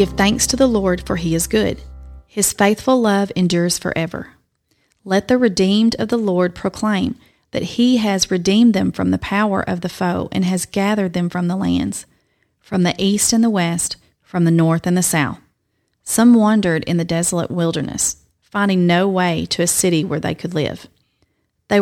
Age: 40-59